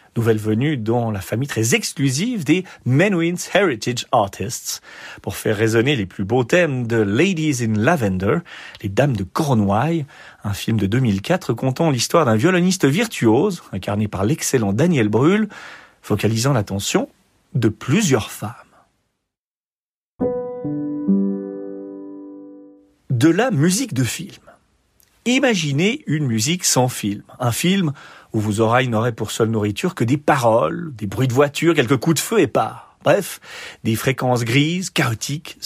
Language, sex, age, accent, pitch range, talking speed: French, male, 40-59, French, 110-165 Hz, 140 wpm